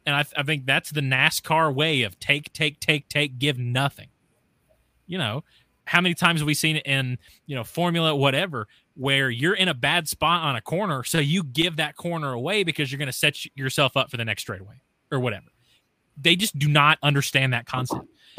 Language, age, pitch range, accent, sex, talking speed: English, 30-49, 130-170 Hz, American, male, 210 wpm